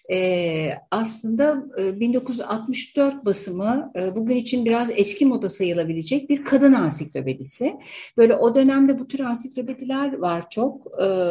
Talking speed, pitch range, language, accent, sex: 110 wpm, 195-265 Hz, Turkish, native, female